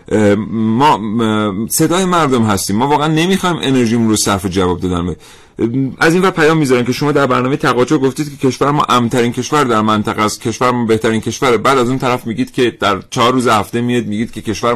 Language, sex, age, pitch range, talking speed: Persian, male, 40-59, 110-145 Hz, 205 wpm